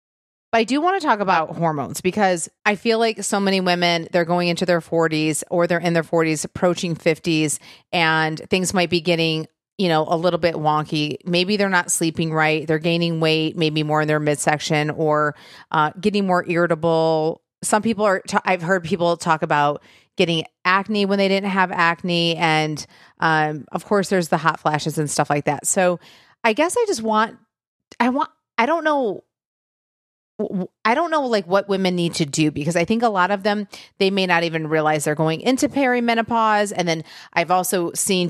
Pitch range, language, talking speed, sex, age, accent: 160-200 Hz, English, 195 wpm, female, 30-49, American